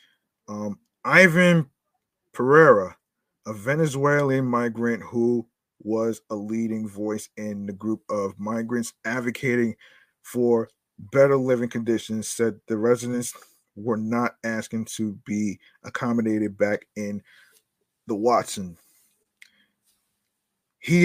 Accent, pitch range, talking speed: American, 110-125 Hz, 100 wpm